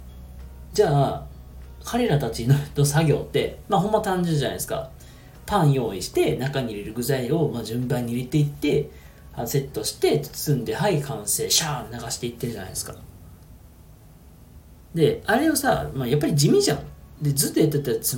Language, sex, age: Japanese, male, 40-59